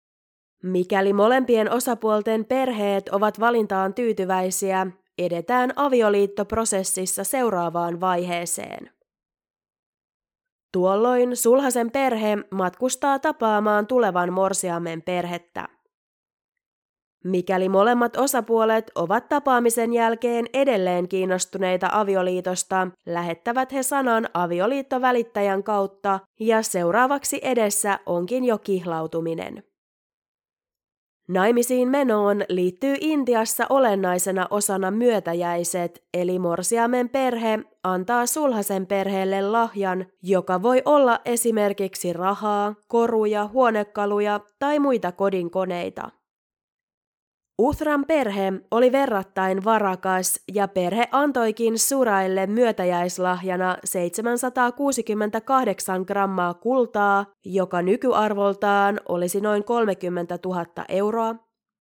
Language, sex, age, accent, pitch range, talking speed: Finnish, female, 20-39, native, 185-235 Hz, 80 wpm